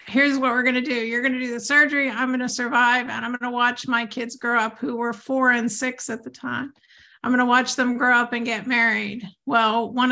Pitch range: 235-265 Hz